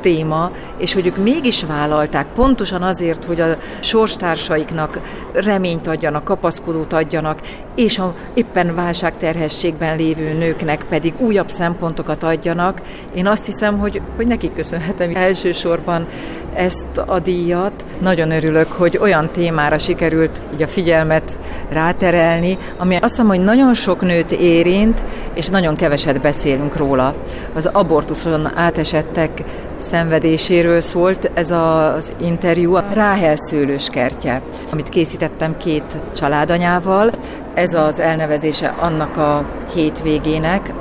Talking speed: 120 wpm